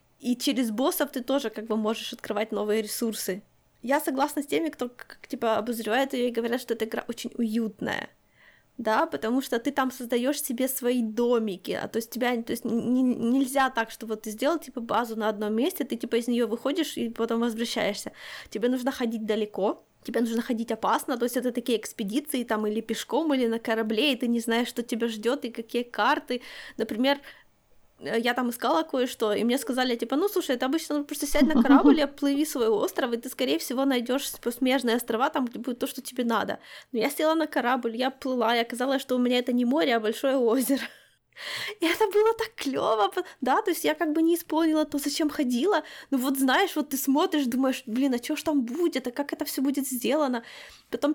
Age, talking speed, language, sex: 20-39, 210 wpm, Ukrainian, female